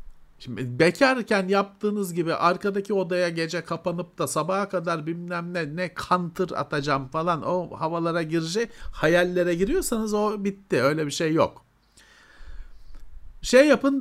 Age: 50-69